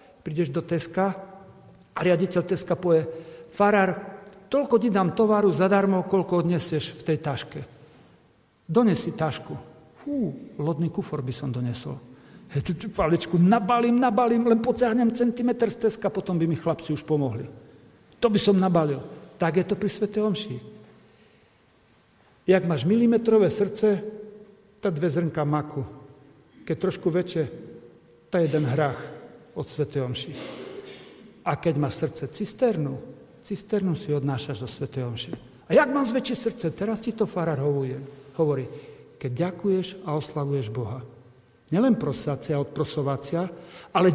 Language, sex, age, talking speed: Slovak, male, 50-69, 130 wpm